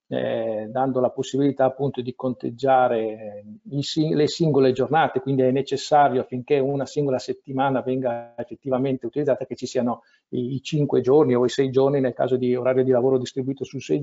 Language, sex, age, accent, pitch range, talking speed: Italian, male, 50-69, native, 125-145 Hz, 170 wpm